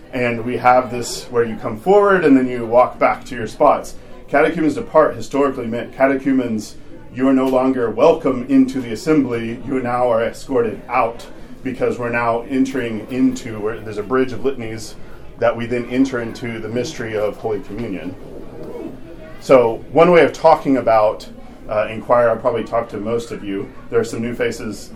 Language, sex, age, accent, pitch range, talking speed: English, male, 40-59, American, 115-135 Hz, 180 wpm